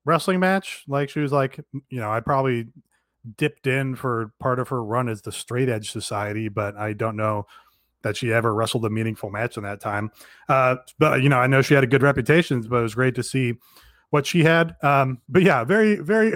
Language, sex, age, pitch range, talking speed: English, male, 30-49, 125-155 Hz, 225 wpm